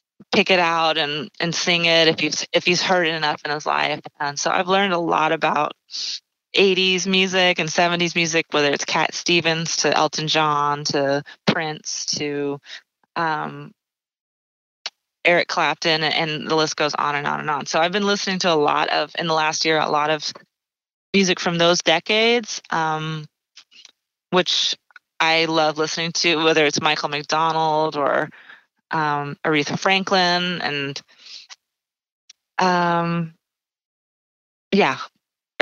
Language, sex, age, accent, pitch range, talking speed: English, female, 20-39, American, 155-175 Hz, 145 wpm